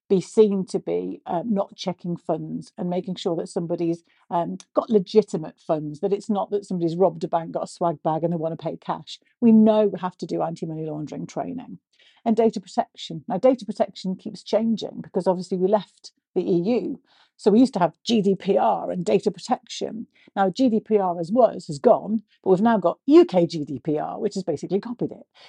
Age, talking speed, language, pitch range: 50-69, 200 wpm, English, 175-220 Hz